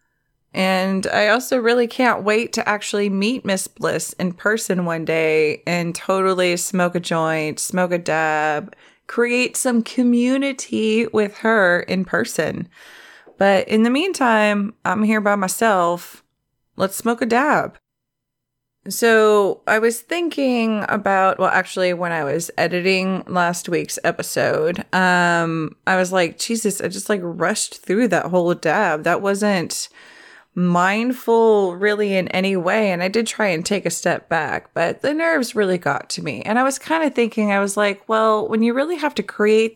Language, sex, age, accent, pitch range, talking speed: English, female, 20-39, American, 175-220 Hz, 165 wpm